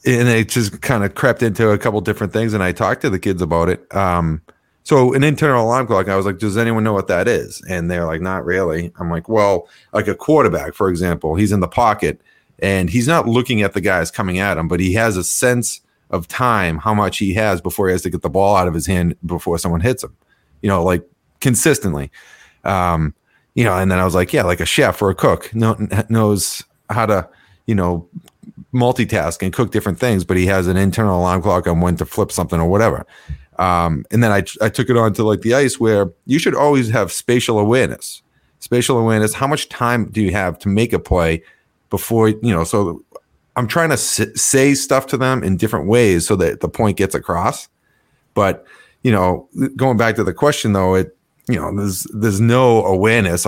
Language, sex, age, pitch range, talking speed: English, male, 30-49, 90-115 Hz, 220 wpm